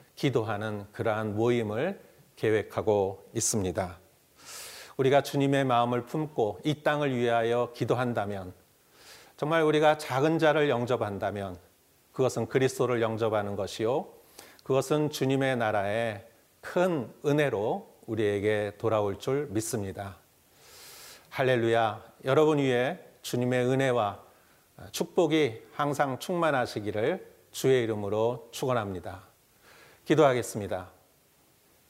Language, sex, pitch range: Korean, male, 105-130 Hz